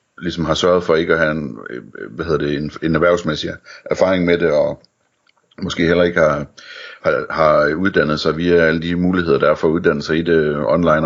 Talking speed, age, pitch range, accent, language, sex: 205 wpm, 60-79, 75-90 Hz, native, Danish, male